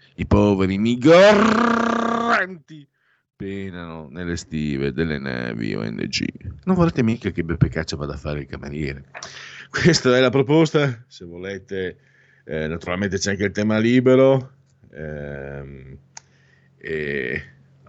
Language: Italian